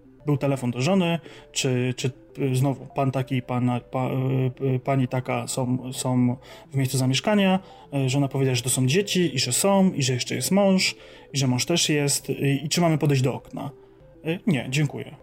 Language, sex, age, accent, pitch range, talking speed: Polish, male, 30-49, native, 130-160 Hz, 175 wpm